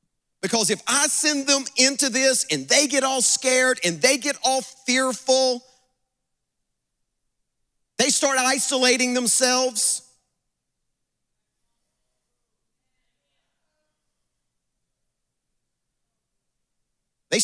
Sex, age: male, 40-59